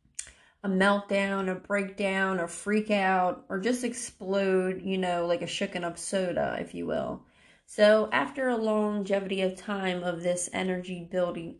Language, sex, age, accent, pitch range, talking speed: English, female, 20-39, American, 185-240 Hz, 155 wpm